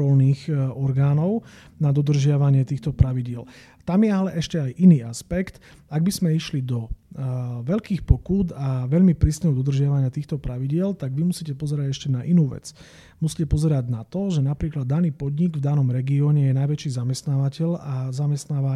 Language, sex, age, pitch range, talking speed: Slovak, male, 40-59, 130-155 Hz, 160 wpm